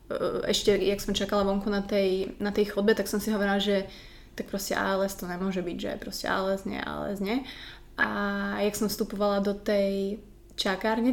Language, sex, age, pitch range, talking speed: Slovak, female, 20-39, 195-215 Hz, 185 wpm